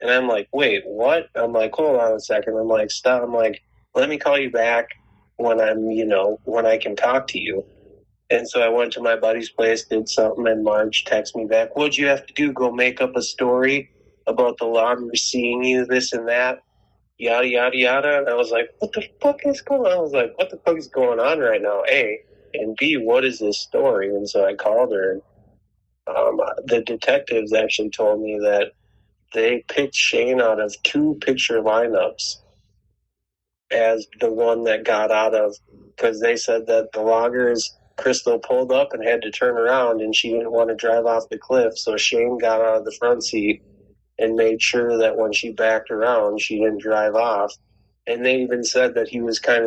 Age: 30-49